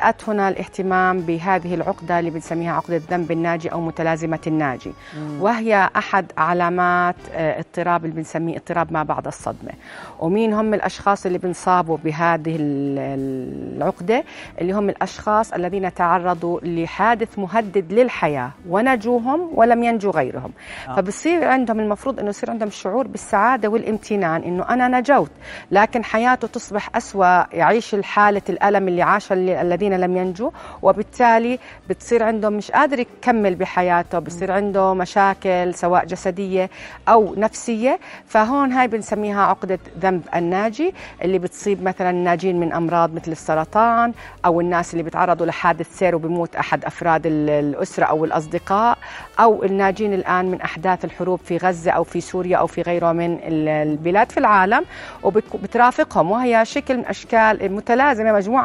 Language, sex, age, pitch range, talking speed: Arabic, female, 40-59, 170-220 Hz, 135 wpm